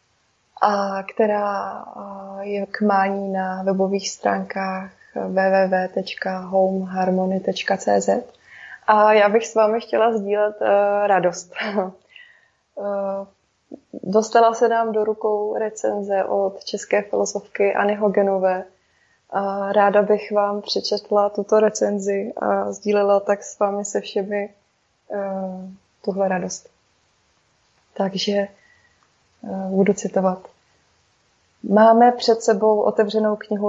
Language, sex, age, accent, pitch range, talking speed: Czech, female, 20-39, native, 195-215 Hz, 100 wpm